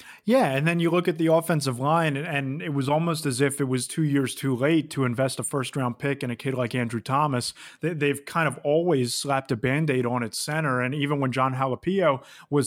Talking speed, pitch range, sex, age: 225 wpm, 135-160 Hz, male, 30-49